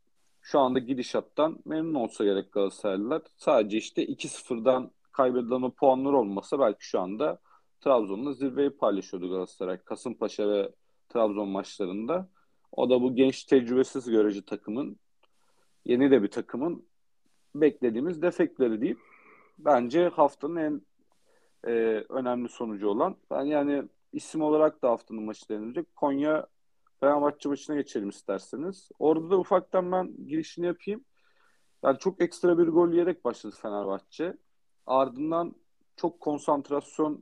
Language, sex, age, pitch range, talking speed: Turkish, male, 40-59, 125-175 Hz, 125 wpm